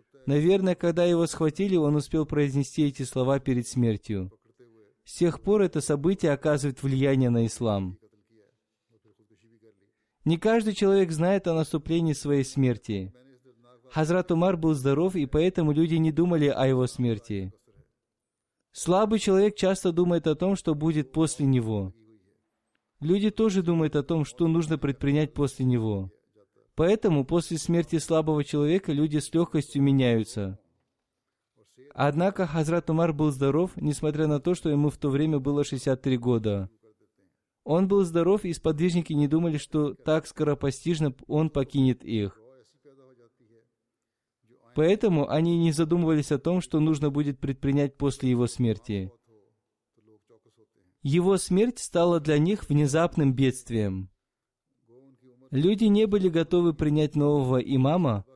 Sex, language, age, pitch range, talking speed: male, Russian, 20-39, 125-165 Hz, 130 wpm